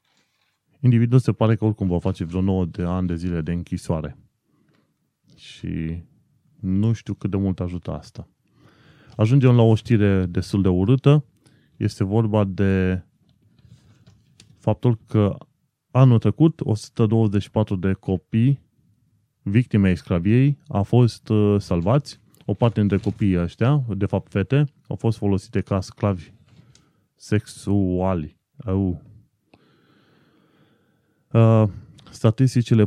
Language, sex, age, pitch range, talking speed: Romanian, male, 20-39, 95-120 Hz, 110 wpm